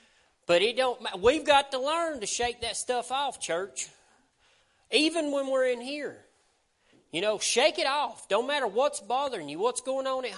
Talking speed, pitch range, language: 185 wpm, 235-310 Hz, English